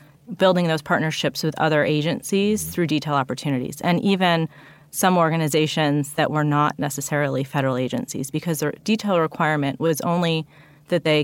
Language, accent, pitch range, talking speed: English, American, 150-175 Hz, 145 wpm